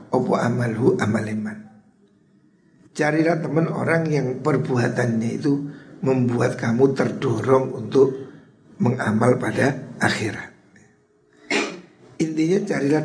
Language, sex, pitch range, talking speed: Indonesian, male, 120-165 Hz, 85 wpm